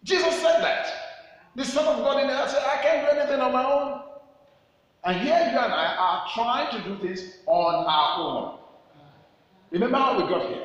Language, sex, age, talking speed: English, male, 50-69, 195 wpm